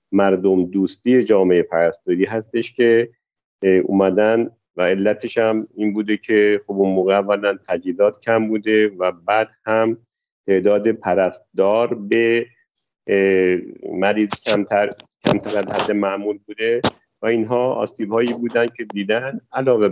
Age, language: 50-69, Persian